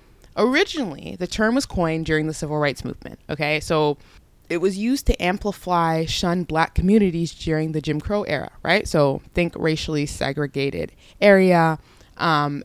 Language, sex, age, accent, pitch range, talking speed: English, female, 20-39, American, 145-180 Hz, 150 wpm